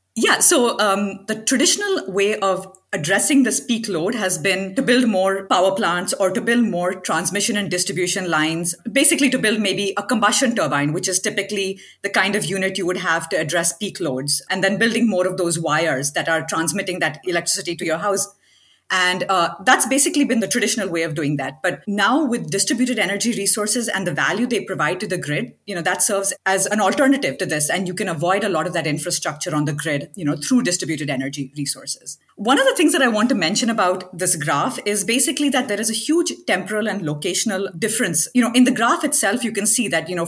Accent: Indian